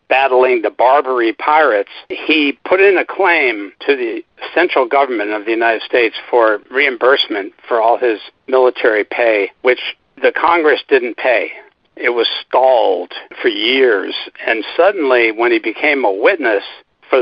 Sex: male